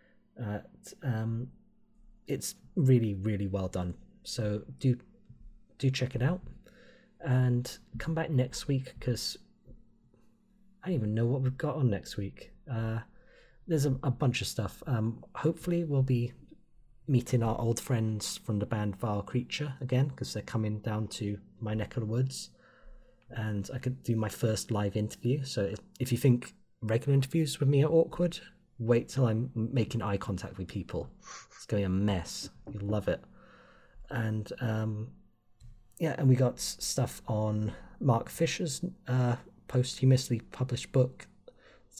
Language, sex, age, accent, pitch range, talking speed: English, male, 30-49, British, 110-135 Hz, 160 wpm